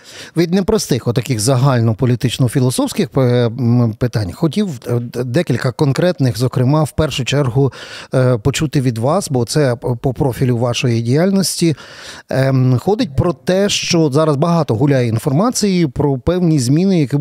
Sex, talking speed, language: male, 115 wpm, Ukrainian